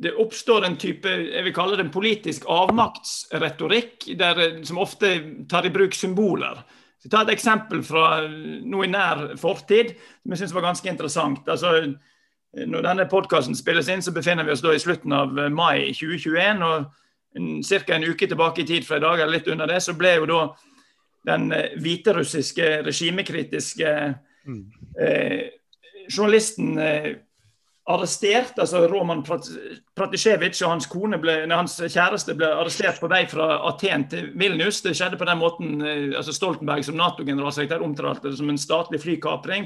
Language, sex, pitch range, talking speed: English, male, 155-190 Hz, 155 wpm